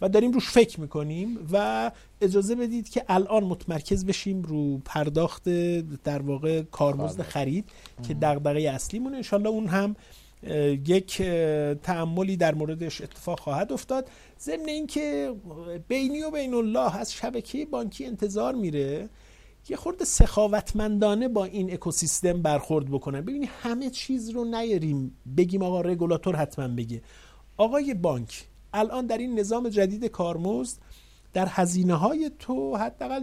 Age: 50-69